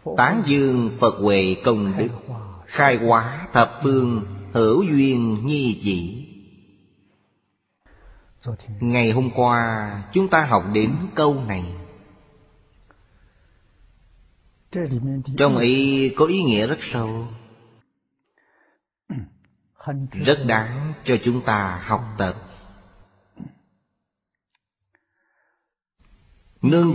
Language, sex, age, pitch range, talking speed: Vietnamese, male, 20-39, 100-125 Hz, 85 wpm